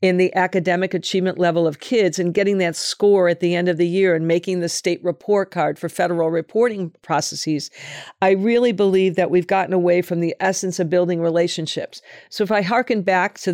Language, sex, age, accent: English, female, 50-69, American